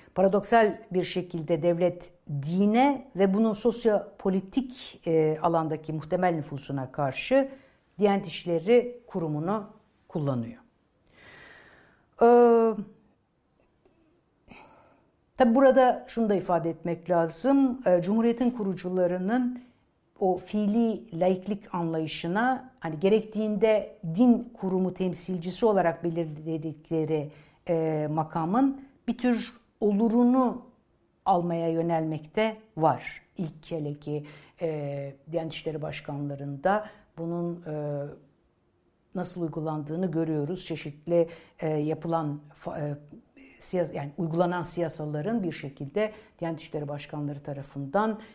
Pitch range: 155-210 Hz